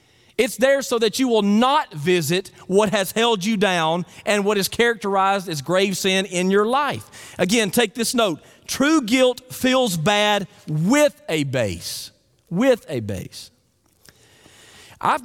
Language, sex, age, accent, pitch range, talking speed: English, male, 40-59, American, 160-255 Hz, 150 wpm